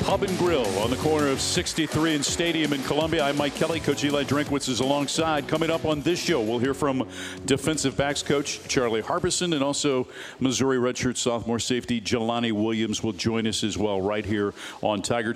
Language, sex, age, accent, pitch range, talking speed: English, male, 50-69, American, 110-140 Hz, 195 wpm